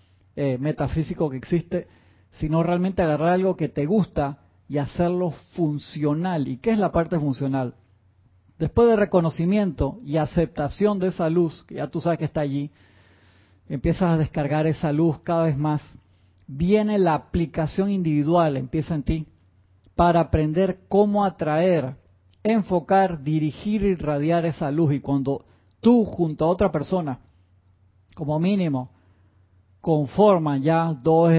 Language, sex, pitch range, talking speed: Spanish, male, 125-170 Hz, 140 wpm